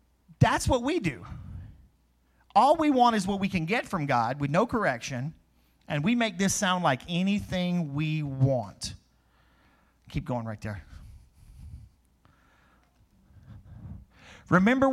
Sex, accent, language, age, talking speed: male, American, English, 40-59, 125 wpm